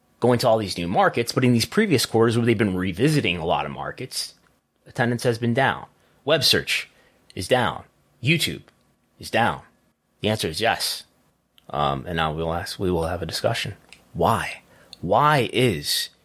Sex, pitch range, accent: male, 100-140 Hz, American